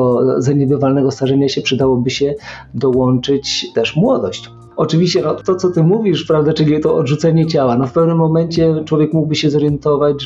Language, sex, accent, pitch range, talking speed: Polish, male, native, 130-150 Hz, 160 wpm